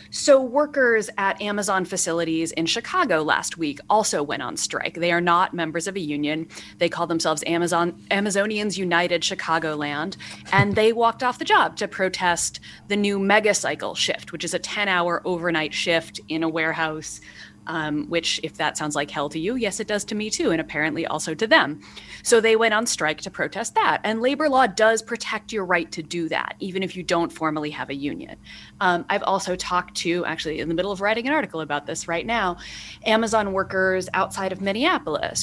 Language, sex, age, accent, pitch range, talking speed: English, female, 30-49, American, 160-205 Hz, 200 wpm